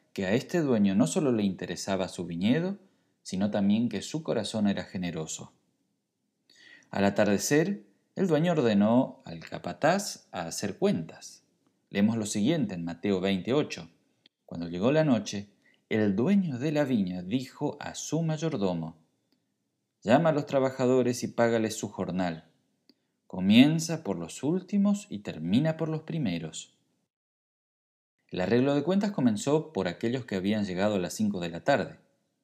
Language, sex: Spanish, male